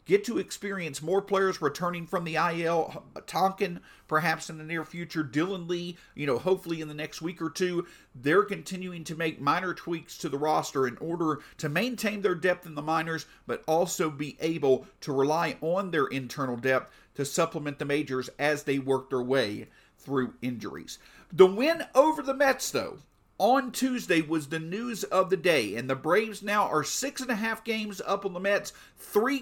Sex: male